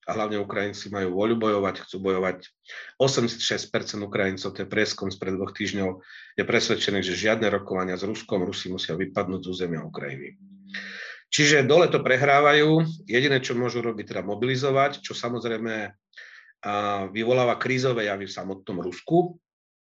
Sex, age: male, 40-59